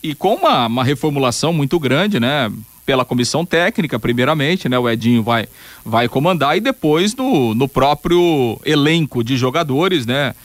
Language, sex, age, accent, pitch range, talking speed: Portuguese, male, 40-59, Brazilian, 125-155 Hz, 155 wpm